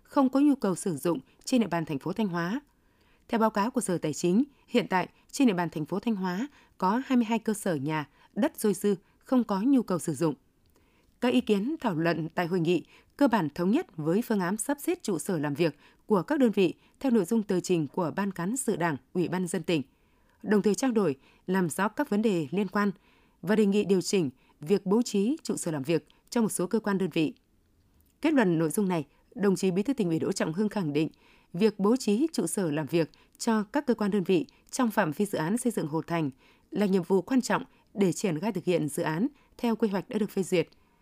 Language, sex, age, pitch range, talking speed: Vietnamese, female, 20-39, 170-225 Hz, 245 wpm